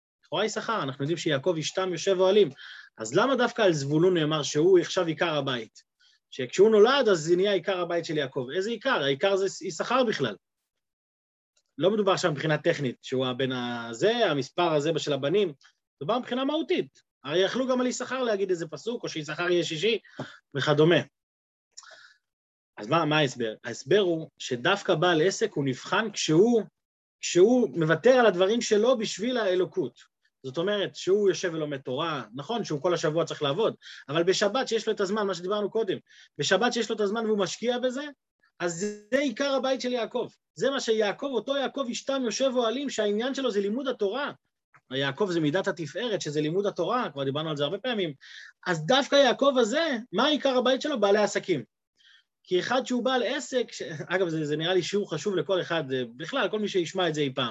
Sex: male